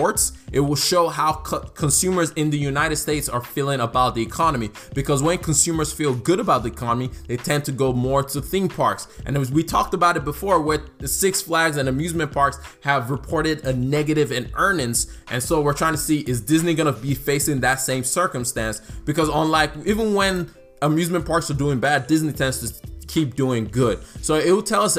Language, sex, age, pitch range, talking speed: English, male, 20-39, 130-180 Hz, 205 wpm